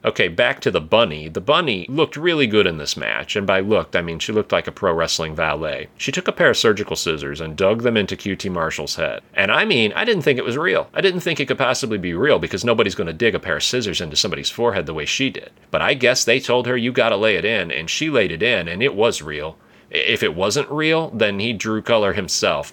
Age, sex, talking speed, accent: 30-49, male, 265 wpm, American